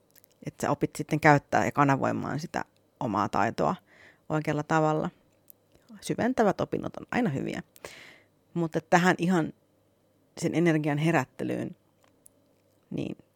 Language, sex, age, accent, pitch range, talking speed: Finnish, female, 30-49, native, 135-170 Hz, 105 wpm